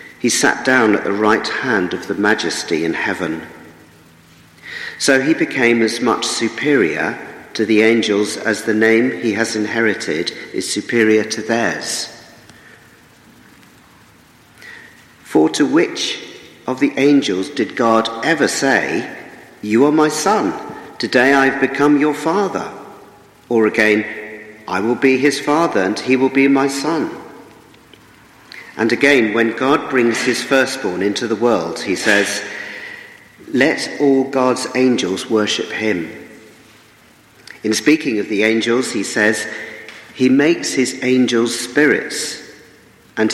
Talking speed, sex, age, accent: 130 wpm, male, 50-69, British